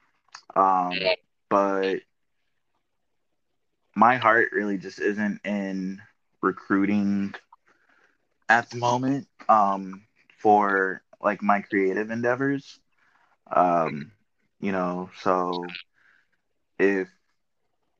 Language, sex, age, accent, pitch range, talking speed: English, male, 20-39, American, 90-110 Hz, 75 wpm